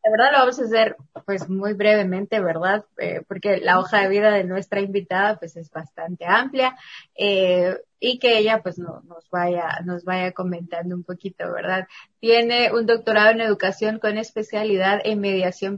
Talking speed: 175 wpm